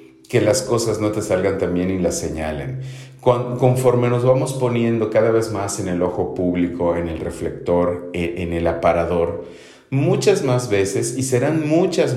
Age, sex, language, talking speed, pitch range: 40-59, male, English, 175 wpm, 90-130 Hz